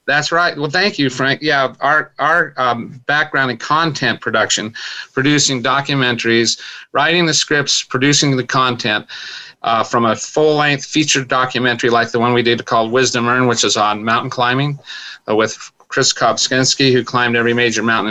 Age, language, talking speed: 40-59, English, 165 wpm